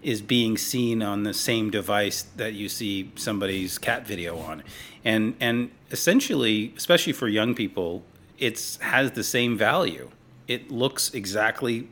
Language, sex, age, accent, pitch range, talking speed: English, male, 40-59, American, 90-110 Hz, 145 wpm